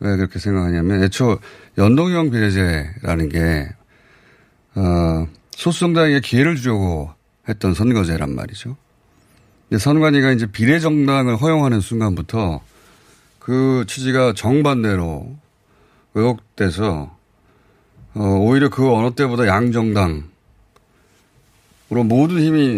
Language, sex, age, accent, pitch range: Korean, male, 30-49, native, 95-130 Hz